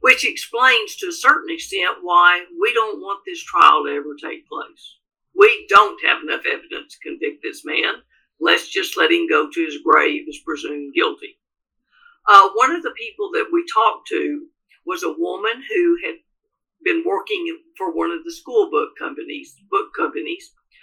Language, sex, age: English, female, 50-69